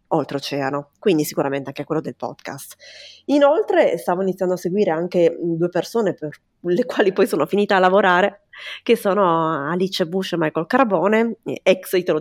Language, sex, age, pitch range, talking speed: Italian, female, 30-49, 155-200 Hz, 155 wpm